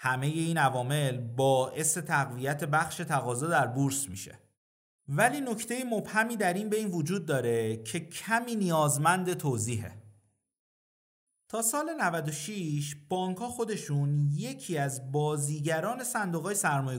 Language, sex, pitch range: Persian, male, 130-190 Hz